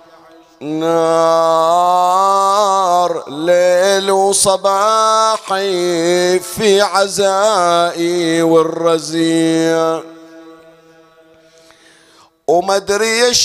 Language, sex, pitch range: Arabic, male, 170-225 Hz